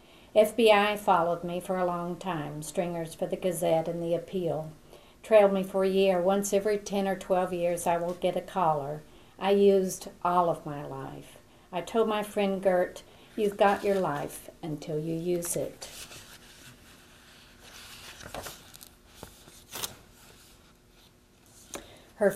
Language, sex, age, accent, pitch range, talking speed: English, female, 50-69, American, 155-195 Hz, 135 wpm